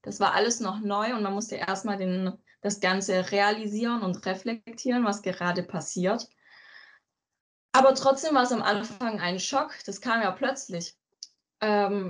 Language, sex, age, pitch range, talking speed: English, female, 10-29, 190-245 Hz, 150 wpm